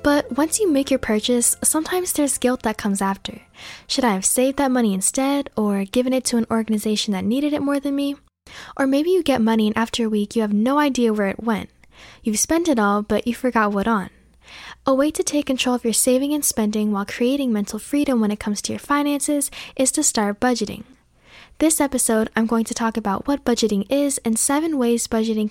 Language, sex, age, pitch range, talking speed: English, female, 10-29, 215-280 Hz, 220 wpm